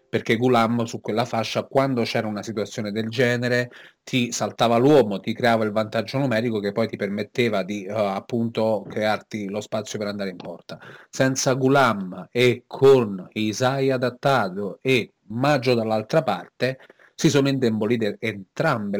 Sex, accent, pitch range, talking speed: male, native, 105-135 Hz, 150 wpm